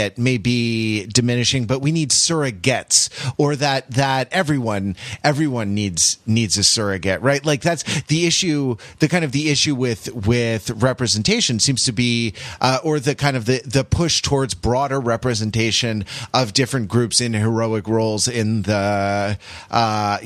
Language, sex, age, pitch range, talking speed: English, male, 30-49, 105-135 Hz, 155 wpm